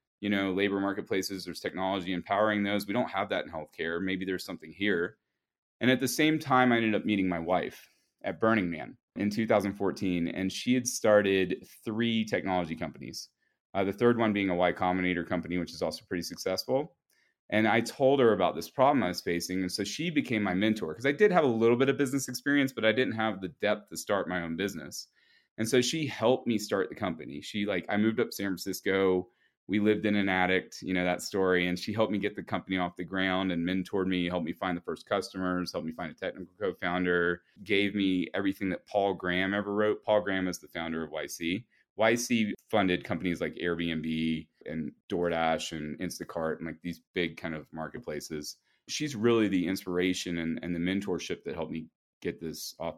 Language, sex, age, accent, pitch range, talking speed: English, male, 30-49, American, 90-110 Hz, 210 wpm